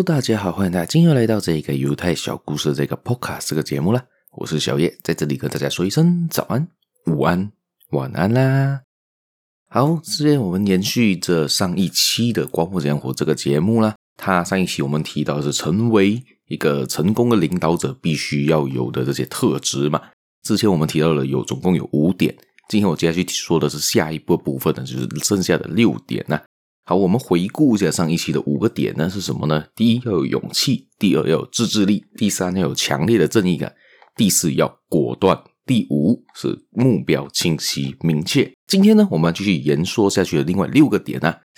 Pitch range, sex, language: 75-115 Hz, male, Chinese